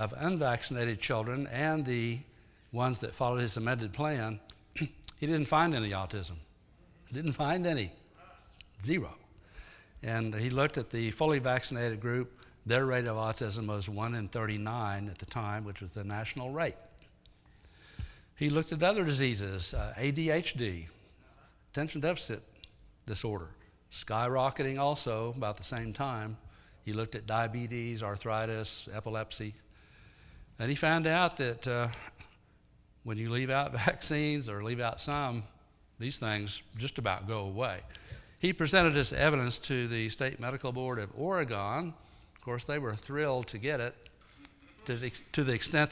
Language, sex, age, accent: English, male, 60-79, American